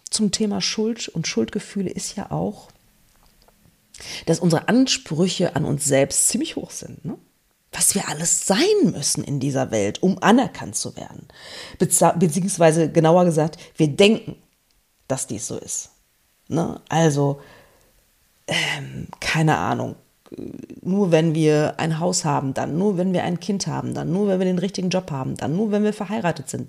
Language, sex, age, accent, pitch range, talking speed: German, female, 40-59, German, 155-210 Hz, 155 wpm